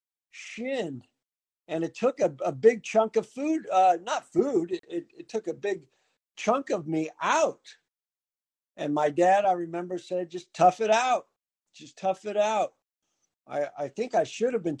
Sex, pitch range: male, 150-225 Hz